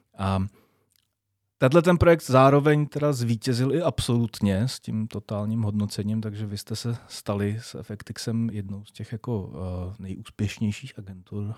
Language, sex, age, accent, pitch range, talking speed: Czech, male, 30-49, native, 100-125 Hz, 140 wpm